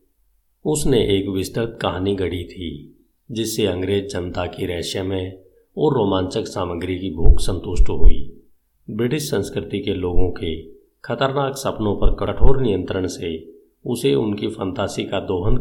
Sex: male